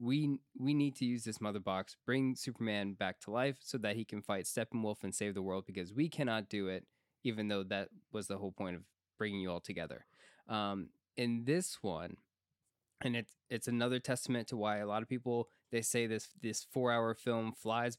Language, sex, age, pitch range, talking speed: English, male, 20-39, 105-125 Hz, 205 wpm